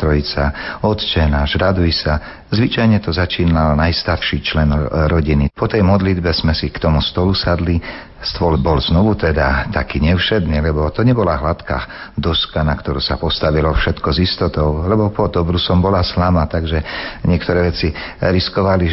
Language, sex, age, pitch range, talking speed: Slovak, male, 50-69, 75-90 Hz, 150 wpm